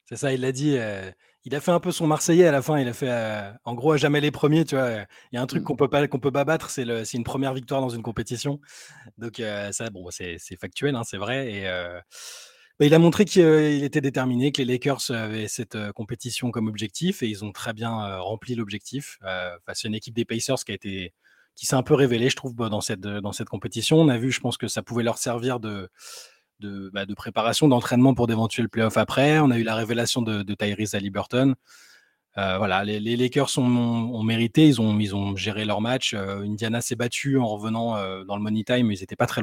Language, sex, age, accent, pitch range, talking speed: French, male, 20-39, French, 105-130 Hz, 255 wpm